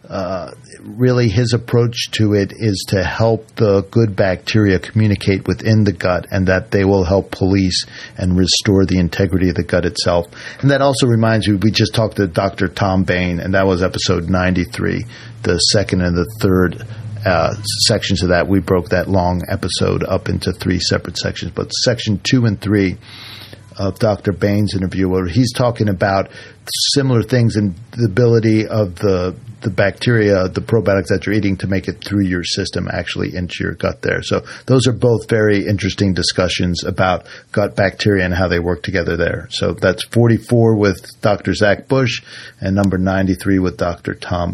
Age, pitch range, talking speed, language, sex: 50-69, 95-115 Hz, 180 wpm, English, male